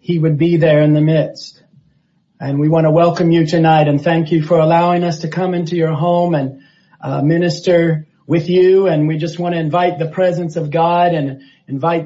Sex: male